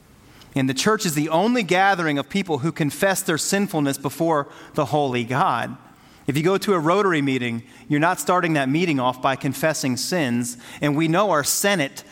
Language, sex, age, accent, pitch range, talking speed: English, male, 30-49, American, 140-195 Hz, 190 wpm